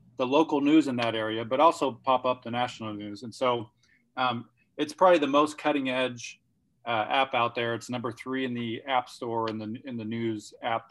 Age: 40-59